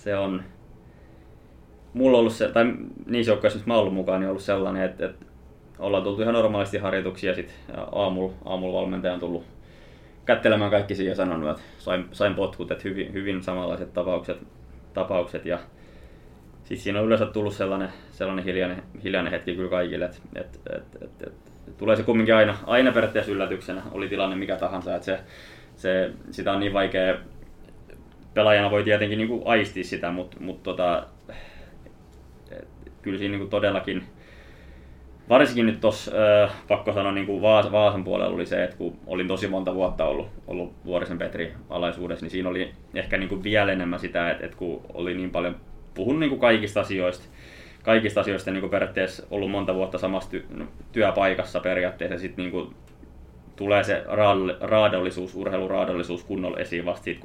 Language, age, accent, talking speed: Finnish, 20-39, native, 145 wpm